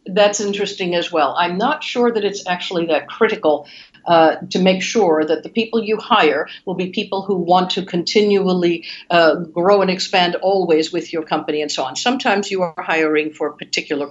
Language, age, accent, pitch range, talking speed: English, 50-69, American, 170-230 Hz, 195 wpm